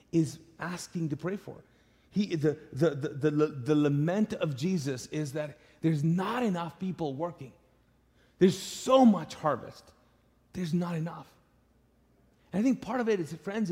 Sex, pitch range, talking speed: male, 165-215 Hz, 160 wpm